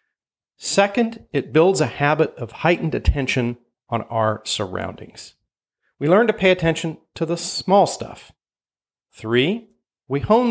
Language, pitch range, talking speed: English, 120-175 Hz, 130 wpm